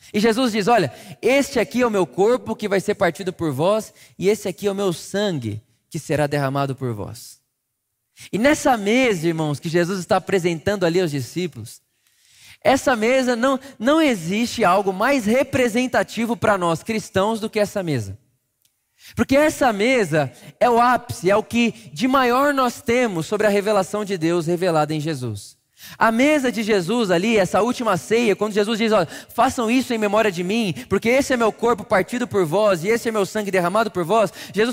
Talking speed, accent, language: 190 wpm, Brazilian, Portuguese